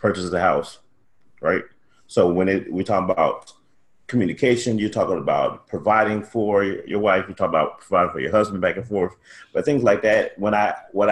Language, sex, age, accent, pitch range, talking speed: English, male, 30-49, American, 100-115 Hz, 190 wpm